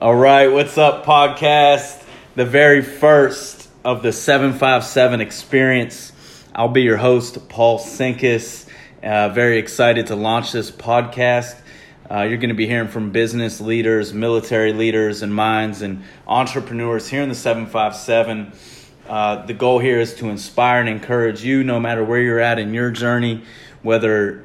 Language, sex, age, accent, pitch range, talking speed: English, male, 30-49, American, 105-120 Hz, 150 wpm